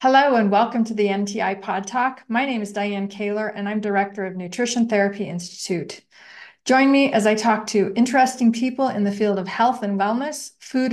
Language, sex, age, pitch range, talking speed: English, female, 40-59, 200-240 Hz, 200 wpm